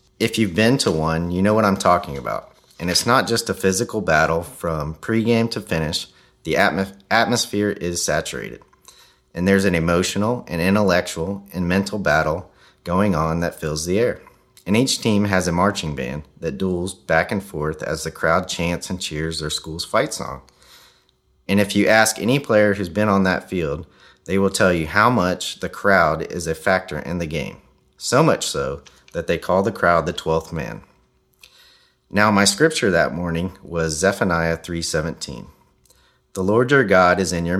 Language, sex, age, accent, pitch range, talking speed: English, male, 30-49, American, 80-105 Hz, 180 wpm